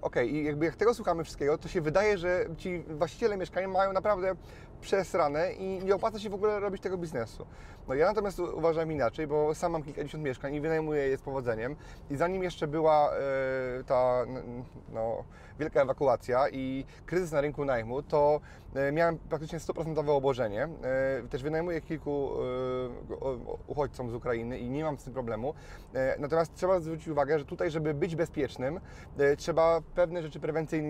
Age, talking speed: 30-49, 175 wpm